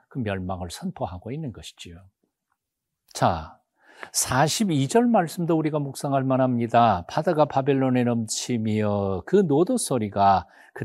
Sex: male